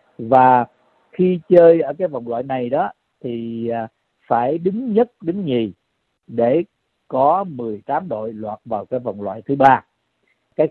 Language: Vietnamese